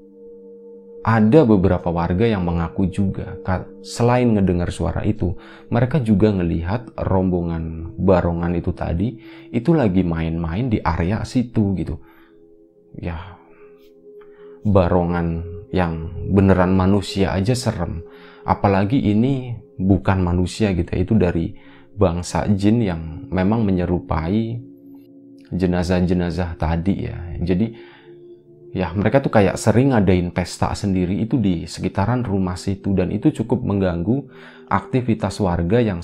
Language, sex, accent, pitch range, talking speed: Indonesian, male, native, 90-115 Hz, 110 wpm